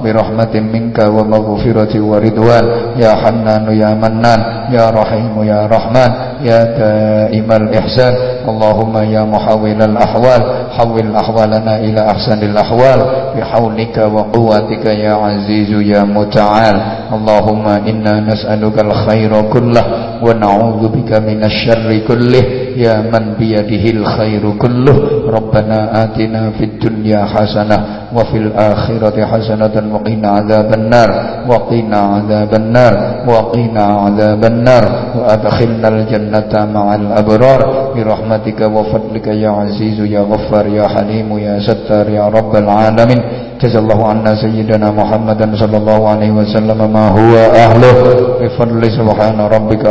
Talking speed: 70 wpm